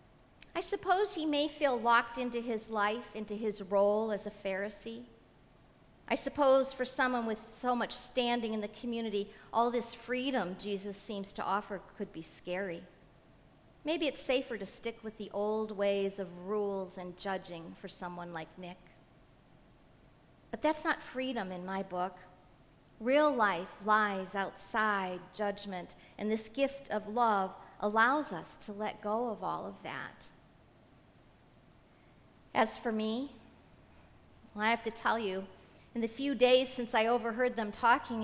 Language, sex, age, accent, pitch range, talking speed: English, female, 50-69, American, 200-250 Hz, 150 wpm